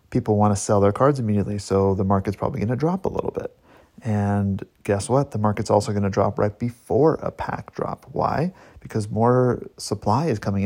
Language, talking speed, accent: English, 210 wpm, American